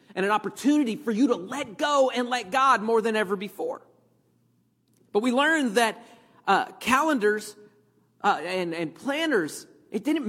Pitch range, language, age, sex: 180-260 Hz, English, 40-59, male